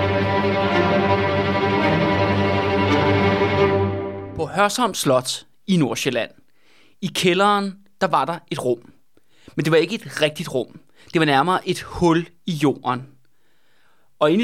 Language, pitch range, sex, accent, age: Danish, 130-185 Hz, male, native, 30-49